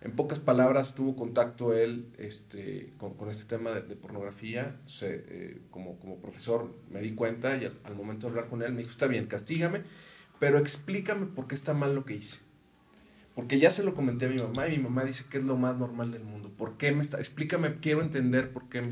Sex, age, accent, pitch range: male, 40-59, Mexican, 120-155 Hz